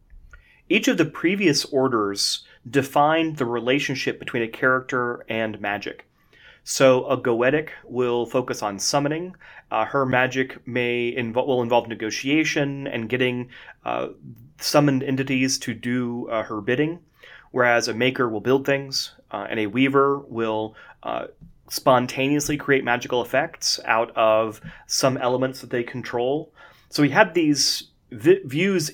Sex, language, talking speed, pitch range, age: male, English, 135 wpm, 120-140 Hz, 30-49